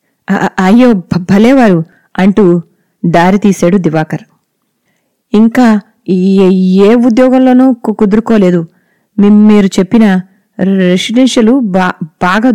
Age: 30-49